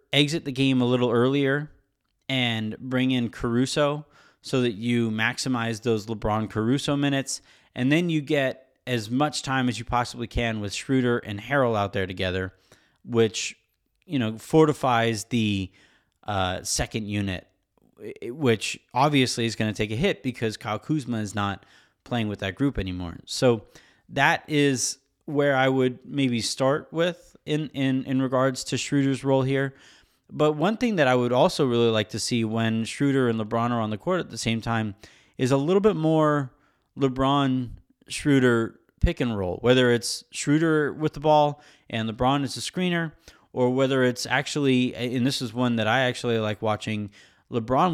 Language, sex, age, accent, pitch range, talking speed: English, male, 30-49, American, 115-140 Hz, 170 wpm